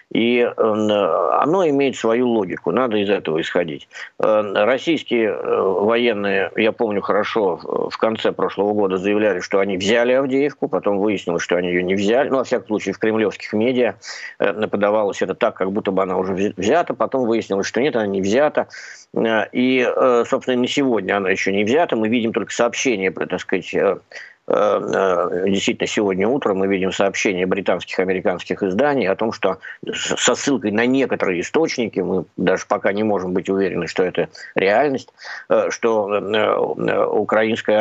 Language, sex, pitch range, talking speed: Ukrainian, male, 100-130 Hz, 155 wpm